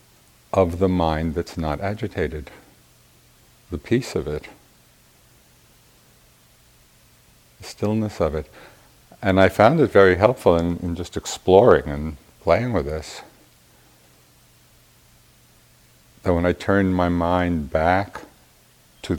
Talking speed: 115 wpm